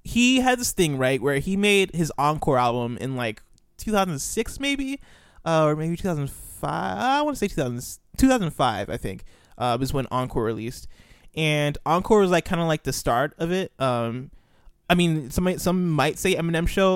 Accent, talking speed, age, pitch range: American, 190 wpm, 20-39, 125-170 Hz